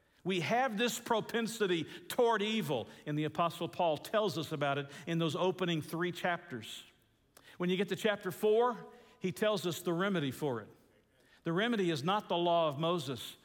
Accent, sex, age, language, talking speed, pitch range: American, male, 50-69, English, 180 wpm, 150-200 Hz